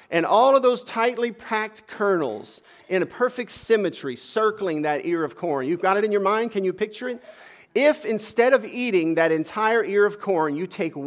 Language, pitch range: English, 185-250 Hz